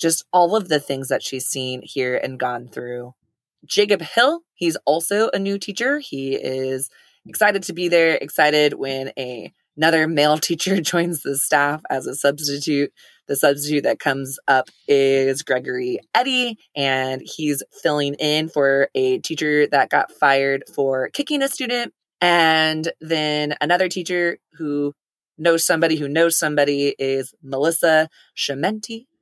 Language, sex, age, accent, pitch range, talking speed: English, female, 20-39, American, 145-230 Hz, 145 wpm